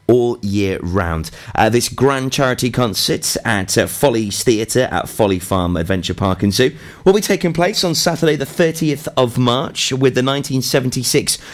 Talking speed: 165 wpm